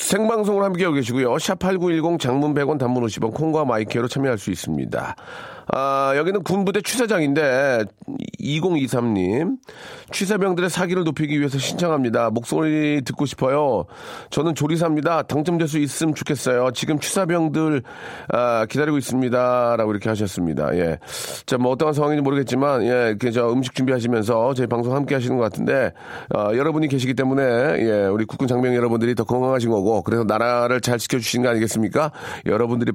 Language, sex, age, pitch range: Korean, male, 40-59, 120-160 Hz